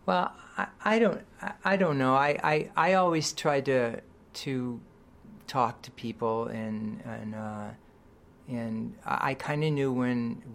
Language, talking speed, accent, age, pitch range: English, 155 wpm, American, 50-69, 120-155 Hz